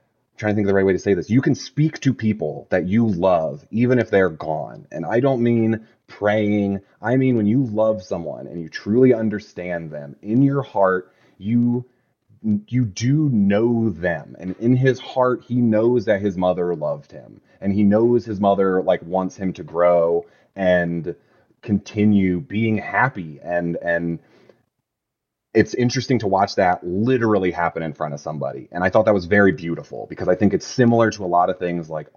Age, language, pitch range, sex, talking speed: 30-49, English, 90-115 Hz, male, 190 wpm